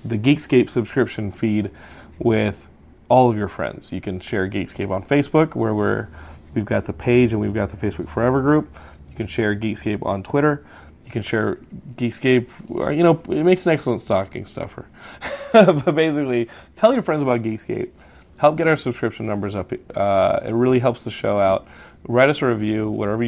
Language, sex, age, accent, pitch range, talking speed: English, male, 30-49, American, 95-120 Hz, 185 wpm